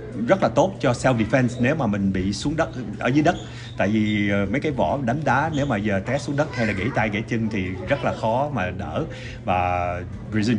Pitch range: 100-115 Hz